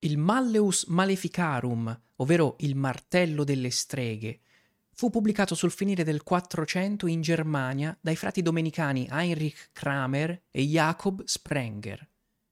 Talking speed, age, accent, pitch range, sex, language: 115 wpm, 30-49, native, 140-180 Hz, male, Italian